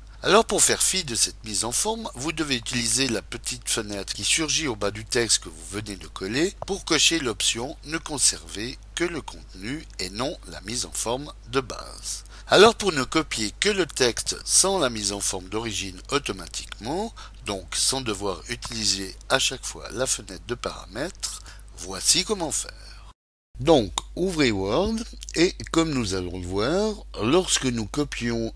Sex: male